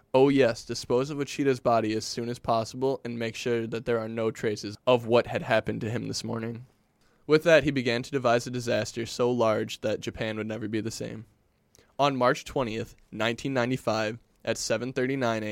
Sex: male